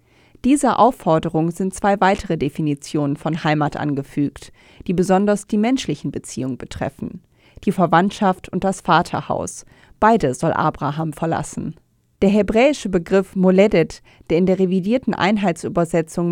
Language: German